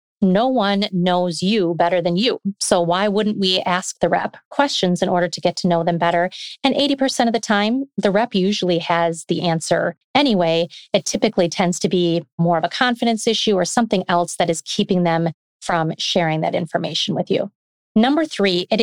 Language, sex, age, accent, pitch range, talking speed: English, female, 30-49, American, 175-220 Hz, 195 wpm